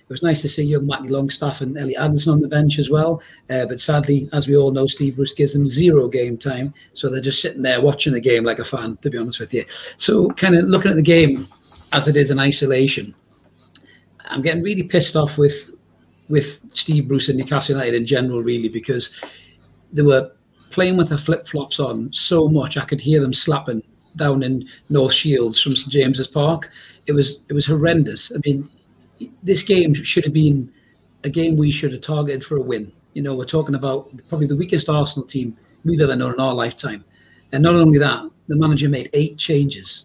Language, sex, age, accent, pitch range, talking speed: English, male, 40-59, British, 130-155 Hz, 215 wpm